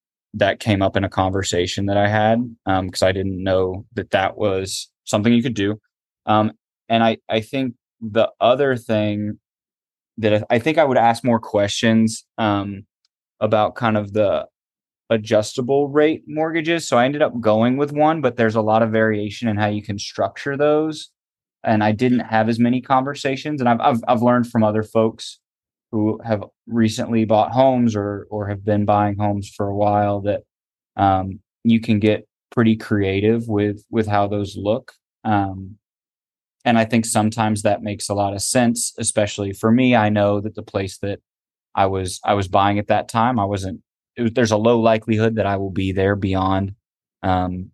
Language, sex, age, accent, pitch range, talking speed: English, male, 20-39, American, 100-120 Hz, 185 wpm